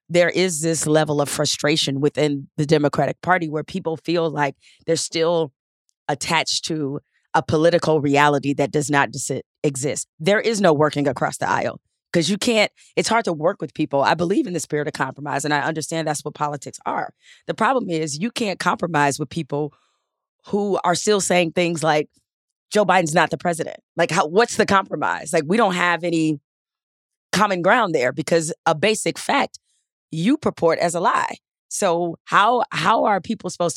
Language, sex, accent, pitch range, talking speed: English, female, American, 150-185 Hz, 180 wpm